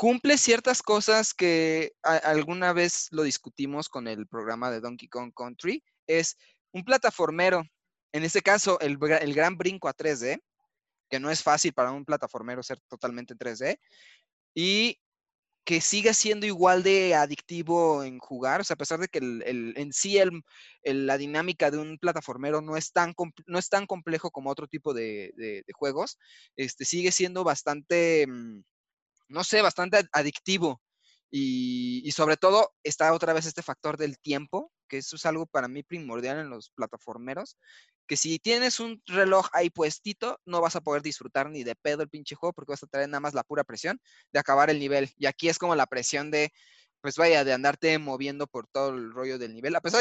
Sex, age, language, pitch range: male, 20-39, Spanish, 140-180 Hz